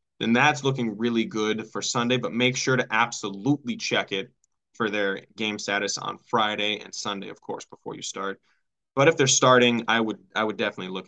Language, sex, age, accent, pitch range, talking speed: English, male, 10-29, American, 105-130 Hz, 200 wpm